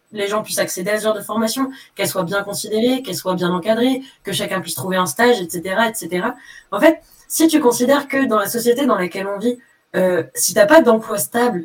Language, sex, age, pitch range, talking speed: French, female, 20-39, 175-240 Hz, 225 wpm